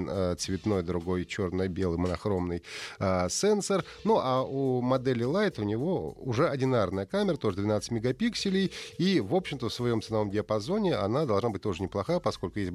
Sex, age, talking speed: male, 30-49, 155 wpm